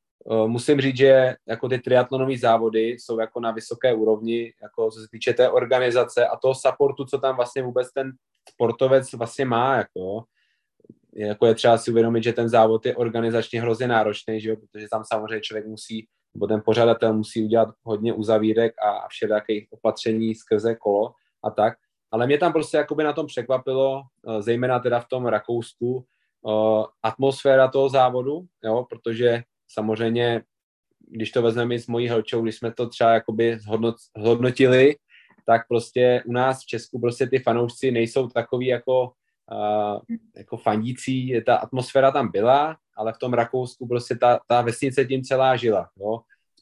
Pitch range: 110-130 Hz